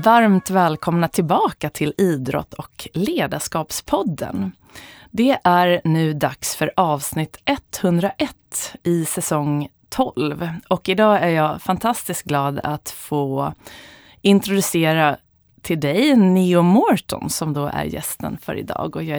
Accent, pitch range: native, 150-190 Hz